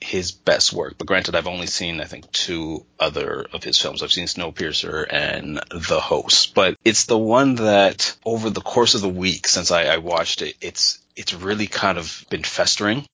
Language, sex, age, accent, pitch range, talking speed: English, male, 30-49, American, 85-100 Hz, 200 wpm